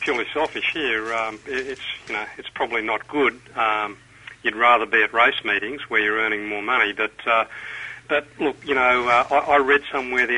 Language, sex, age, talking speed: English, male, 40-59, 200 wpm